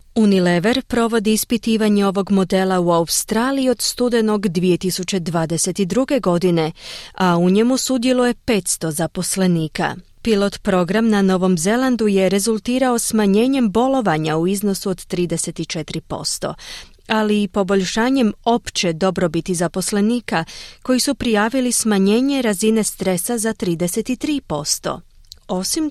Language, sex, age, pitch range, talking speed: Croatian, female, 30-49, 170-220 Hz, 105 wpm